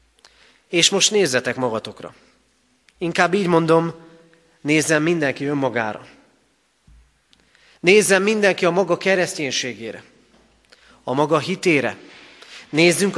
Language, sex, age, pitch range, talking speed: Hungarian, male, 30-49, 135-195 Hz, 85 wpm